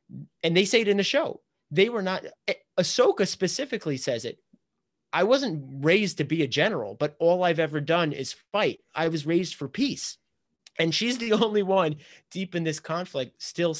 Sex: male